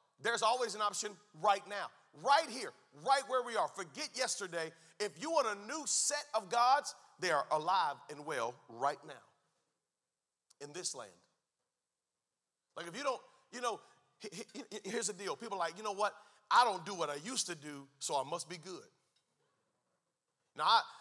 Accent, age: American, 40-59